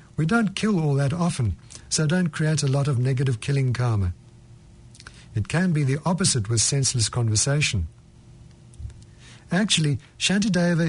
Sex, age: male, 60-79